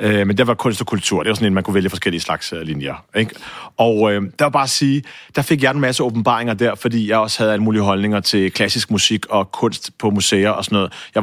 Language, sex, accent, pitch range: English, male, Danish, 110-155 Hz